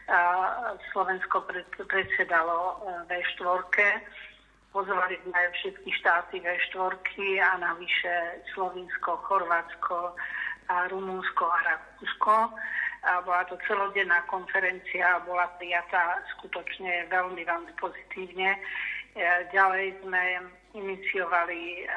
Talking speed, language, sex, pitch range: 90 wpm, Slovak, female, 175-195 Hz